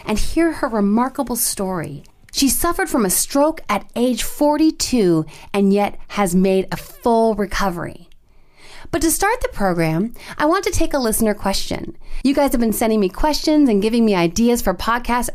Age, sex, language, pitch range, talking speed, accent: 30-49, female, English, 205-290 Hz, 175 wpm, American